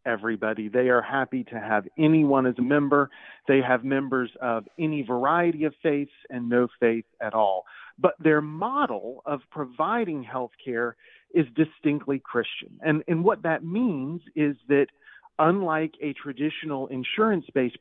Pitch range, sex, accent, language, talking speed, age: 130-170 Hz, male, American, English, 150 wpm, 40-59